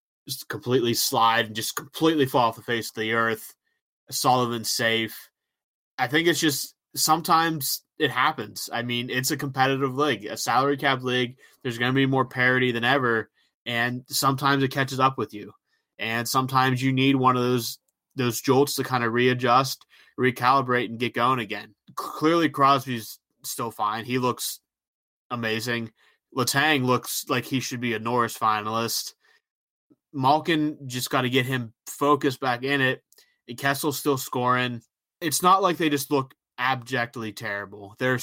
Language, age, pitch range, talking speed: English, 20-39, 120-140 Hz, 160 wpm